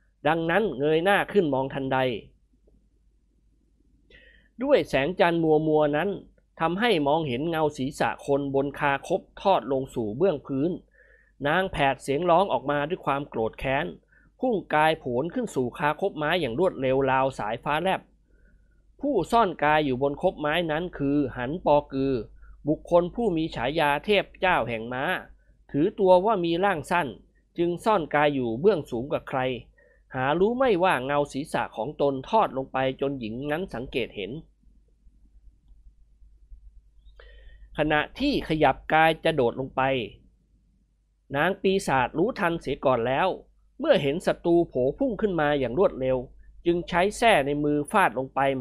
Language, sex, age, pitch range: Thai, male, 20-39, 130-175 Hz